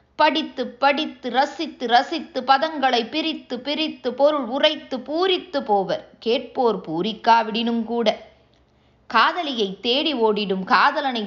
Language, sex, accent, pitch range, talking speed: Tamil, female, native, 215-290 Hz, 95 wpm